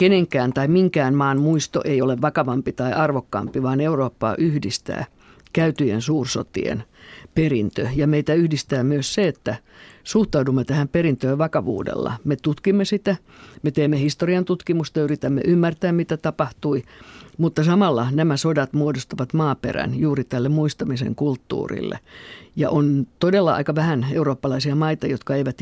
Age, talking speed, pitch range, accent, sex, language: 50-69, 130 wpm, 130-155 Hz, native, female, Finnish